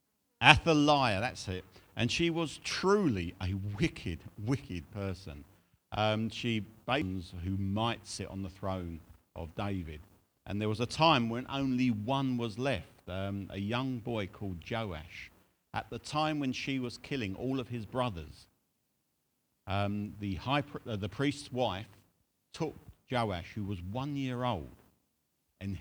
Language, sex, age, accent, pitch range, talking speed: English, male, 50-69, British, 95-125 Hz, 150 wpm